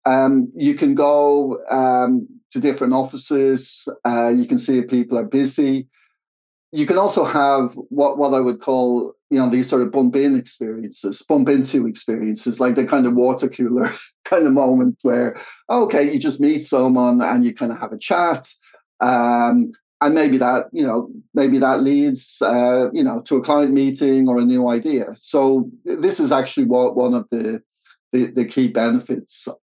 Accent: British